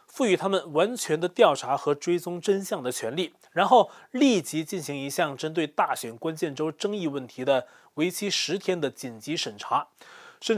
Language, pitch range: Chinese, 155-215 Hz